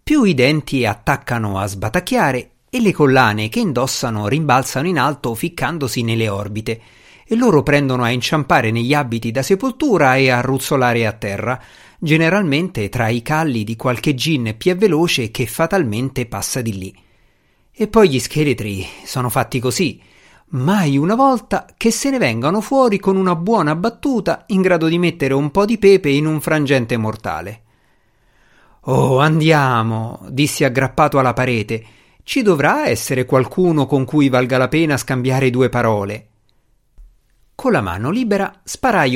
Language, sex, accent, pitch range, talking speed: Italian, male, native, 115-175 Hz, 150 wpm